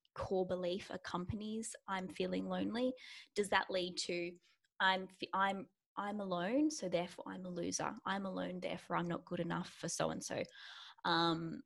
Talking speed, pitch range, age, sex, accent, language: 160 wpm, 175-195 Hz, 10-29, female, Australian, English